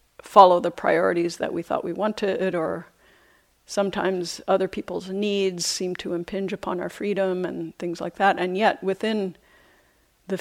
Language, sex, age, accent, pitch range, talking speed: English, female, 50-69, American, 180-205 Hz, 155 wpm